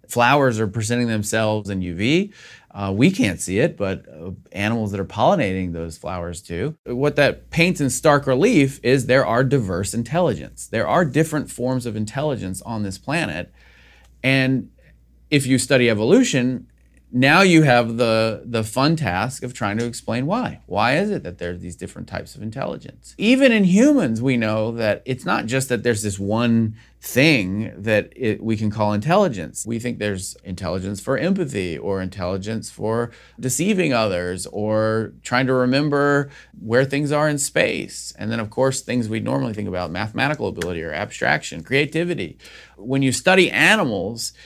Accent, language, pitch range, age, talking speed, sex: American, English, 100-135 Hz, 30-49, 170 wpm, male